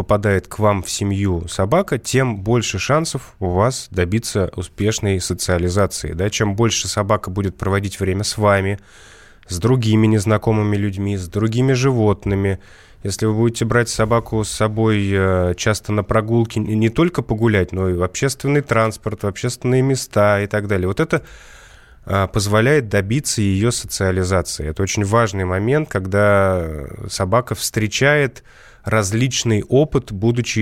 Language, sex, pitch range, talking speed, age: Russian, male, 100-115 Hz, 135 wpm, 20-39